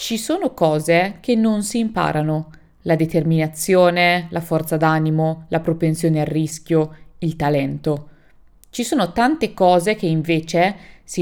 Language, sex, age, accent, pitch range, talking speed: Italian, female, 20-39, native, 155-185 Hz, 135 wpm